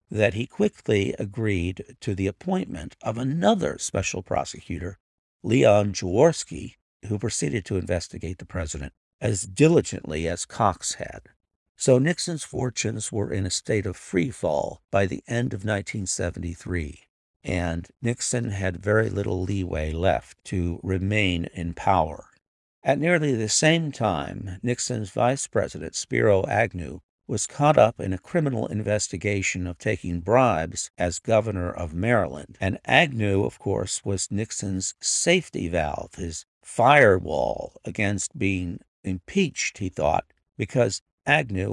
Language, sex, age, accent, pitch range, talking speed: English, male, 50-69, American, 90-120 Hz, 130 wpm